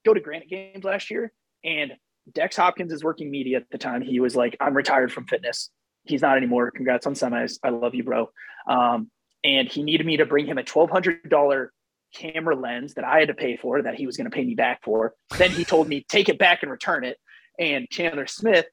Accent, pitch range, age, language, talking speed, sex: American, 145-220 Hz, 30-49, English, 230 wpm, male